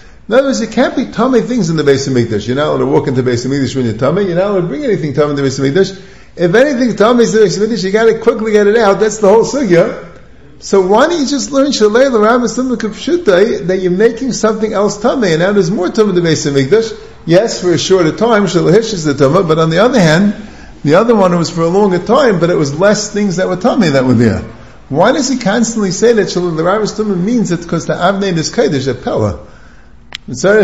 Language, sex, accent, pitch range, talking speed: English, male, American, 140-215 Hz, 245 wpm